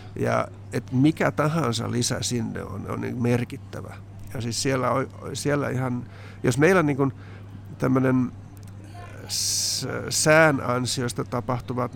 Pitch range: 105-135 Hz